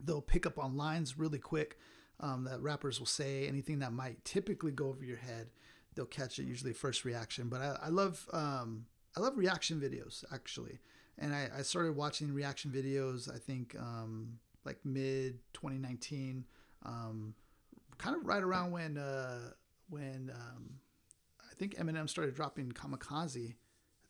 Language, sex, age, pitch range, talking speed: English, male, 30-49, 115-150 Hz, 160 wpm